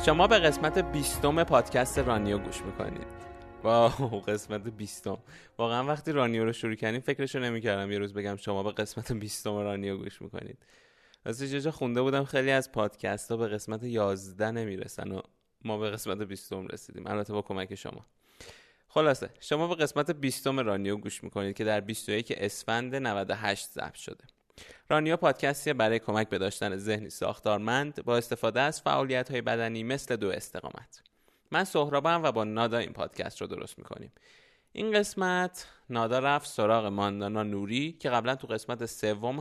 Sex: male